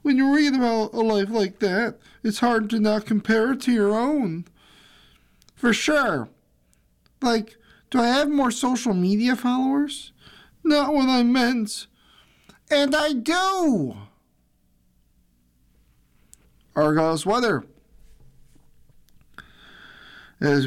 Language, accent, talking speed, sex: English, American, 105 wpm, male